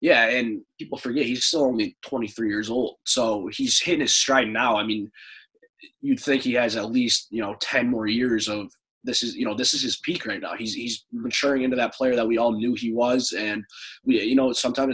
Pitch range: 110-135 Hz